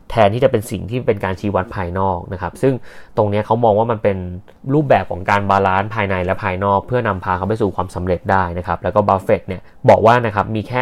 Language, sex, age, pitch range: Thai, male, 20-39, 95-115 Hz